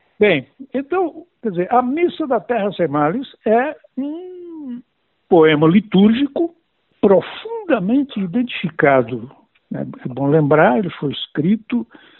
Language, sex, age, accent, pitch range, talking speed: Portuguese, male, 60-79, Brazilian, 145-225 Hz, 110 wpm